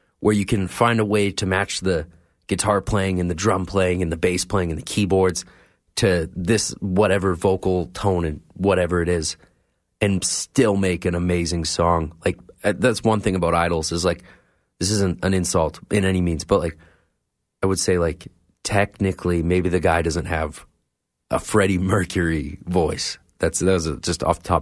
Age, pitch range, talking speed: 30-49, 85-95 Hz, 180 wpm